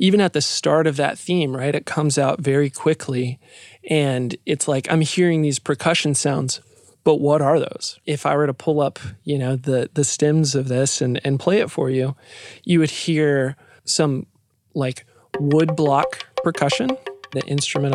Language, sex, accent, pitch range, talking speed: English, male, American, 130-170 Hz, 180 wpm